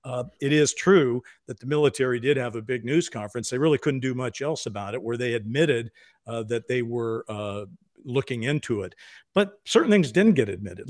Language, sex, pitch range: English, male, 120-155 Hz